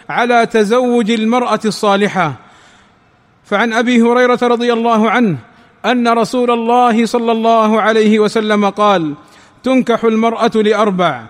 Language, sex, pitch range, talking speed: Arabic, male, 215-240 Hz, 110 wpm